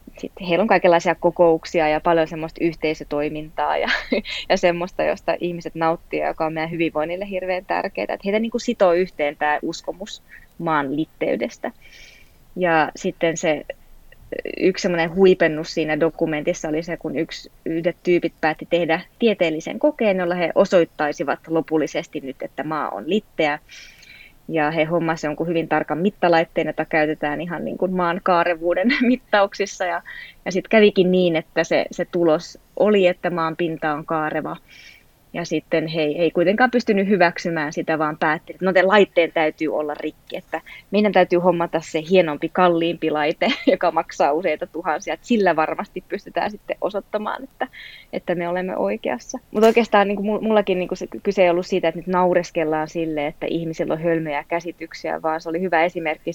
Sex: female